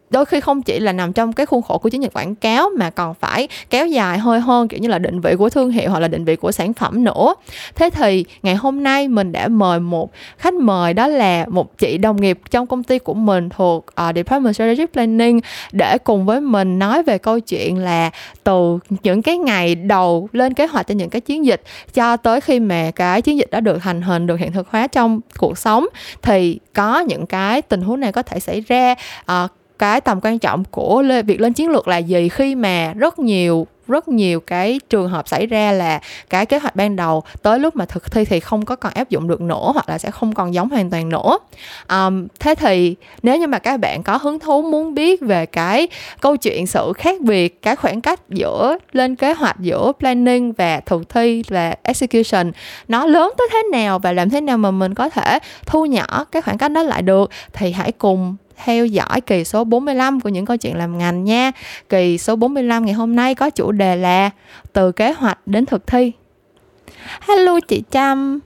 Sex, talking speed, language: female, 225 wpm, Vietnamese